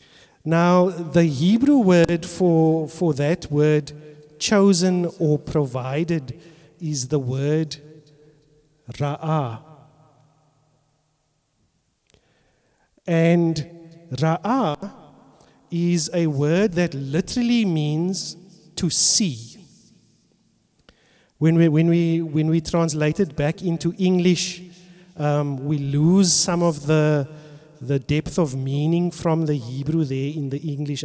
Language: English